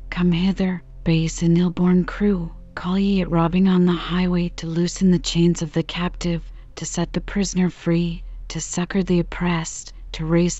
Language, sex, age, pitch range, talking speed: English, female, 40-59, 165-195 Hz, 175 wpm